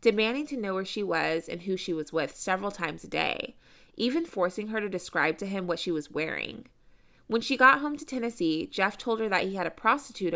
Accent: American